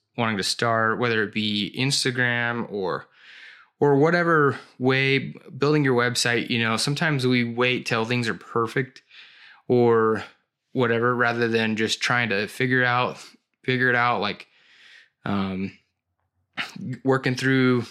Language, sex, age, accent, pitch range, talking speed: English, male, 20-39, American, 110-130 Hz, 130 wpm